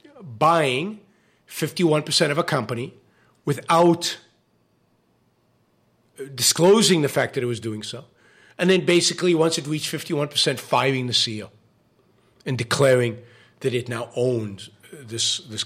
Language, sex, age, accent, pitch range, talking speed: English, male, 50-69, American, 120-170 Hz, 125 wpm